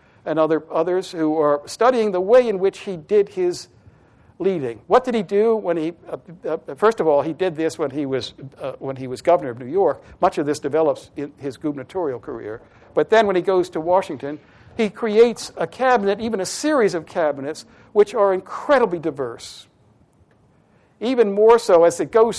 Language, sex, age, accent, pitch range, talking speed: English, male, 60-79, American, 150-205 Hz, 195 wpm